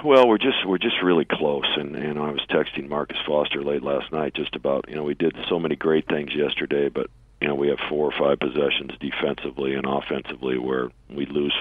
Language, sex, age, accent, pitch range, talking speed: English, male, 50-69, American, 70-80 Hz, 220 wpm